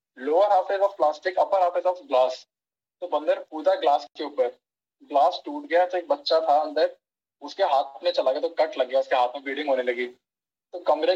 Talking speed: 205 wpm